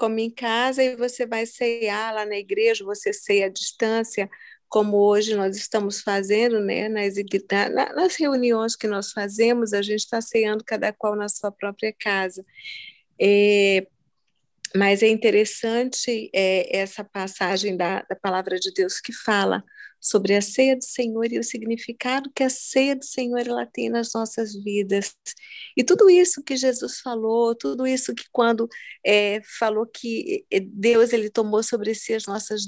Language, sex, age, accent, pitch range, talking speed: Portuguese, female, 40-59, Brazilian, 210-255 Hz, 160 wpm